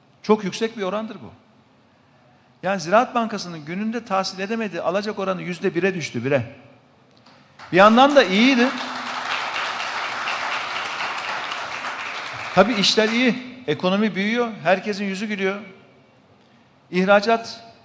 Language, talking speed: Turkish, 100 wpm